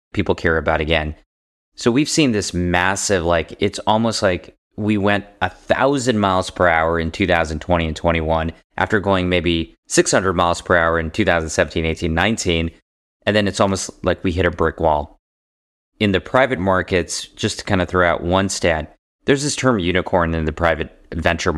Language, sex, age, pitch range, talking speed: English, male, 30-49, 85-110 Hz, 180 wpm